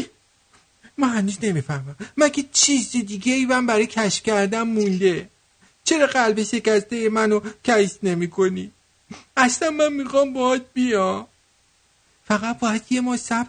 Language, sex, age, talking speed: English, male, 50-69, 130 wpm